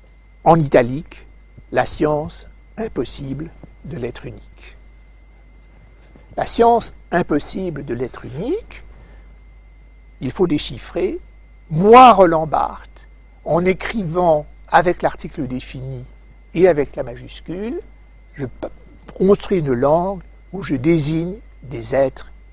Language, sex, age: French, male, 60-79